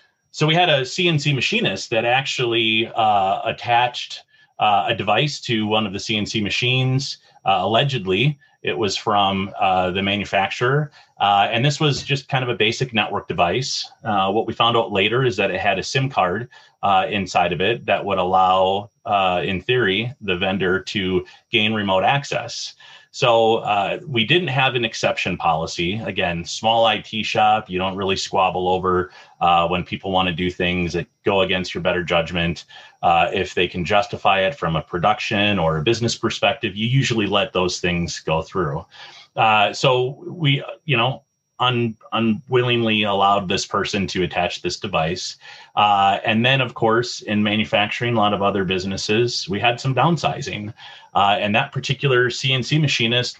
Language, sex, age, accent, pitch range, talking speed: English, male, 30-49, American, 95-125 Hz, 170 wpm